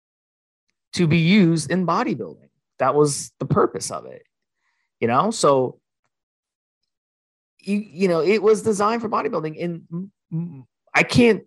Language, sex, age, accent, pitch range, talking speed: English, male, 30-49, American, 130-170 Hz, 140 wpm